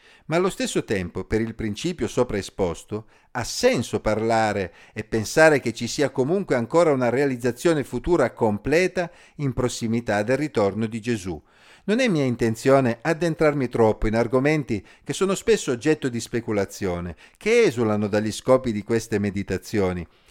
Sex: male